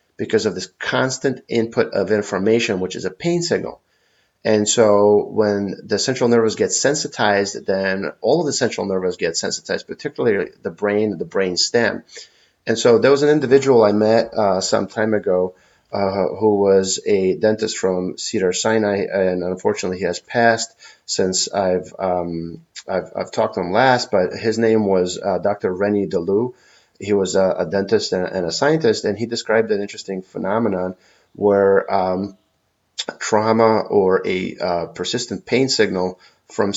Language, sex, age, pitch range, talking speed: English, male, 30-49, 95-110 Hz, 165 wpm